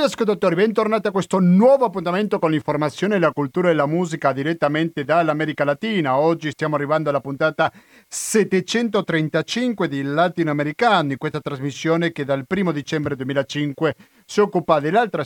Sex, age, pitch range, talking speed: male, 50-69, 140-185 Hz, 140 wpm